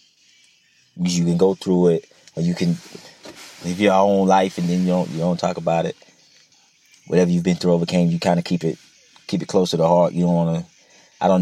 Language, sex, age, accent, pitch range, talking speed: English, male, 30-49, American, 80-90 Hz, 220 wpm